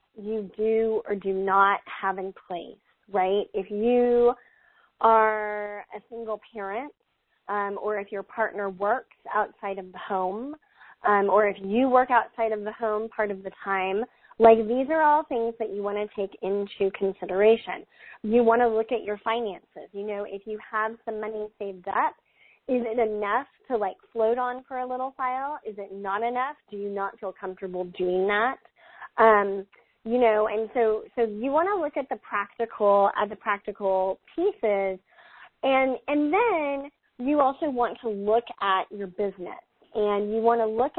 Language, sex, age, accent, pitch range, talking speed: English, female, 20-39, American, 200-240 Hz, 175 wpm